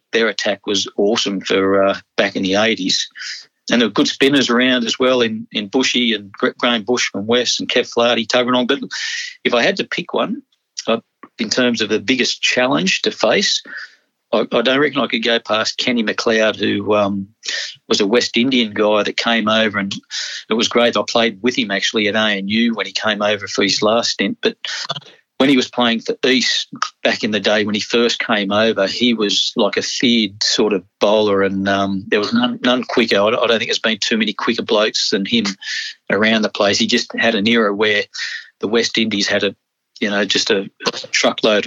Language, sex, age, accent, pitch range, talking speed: English, male, 50-69, Australian, 105-125 Hz, 215 wpm